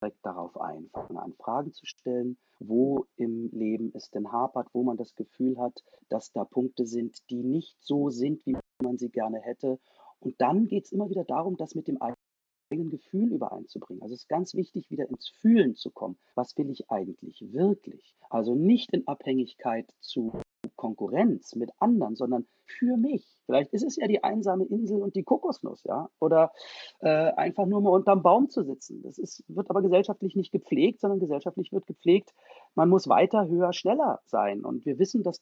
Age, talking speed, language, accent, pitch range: 40-59, 185 wpm, German, German, 130-200 Hz